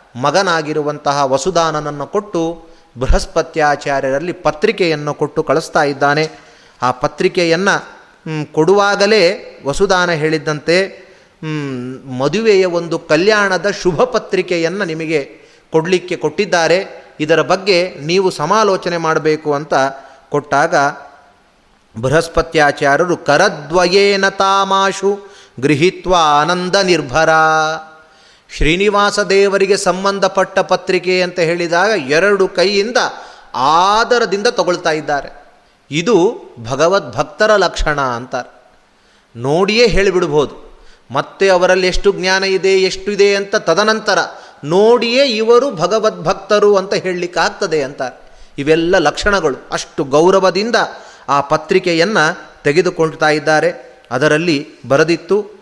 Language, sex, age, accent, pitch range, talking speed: Kannada, male, 30-49, native, 155-195 Hz, 80 wpm